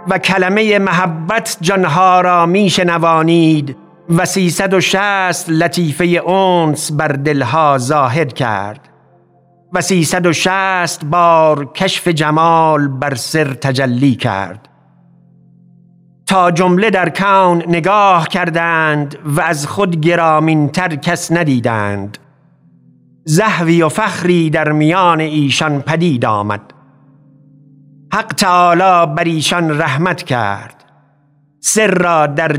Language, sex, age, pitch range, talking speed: Persian, male, 50-69, 150-180 Hz, 105 wpm